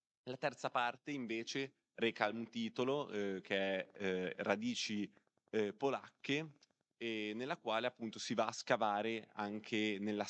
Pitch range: 95-115 Hz